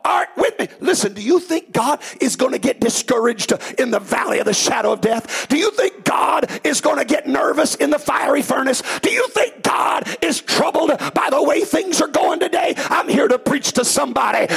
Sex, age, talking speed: male, 50-69, 215 wpm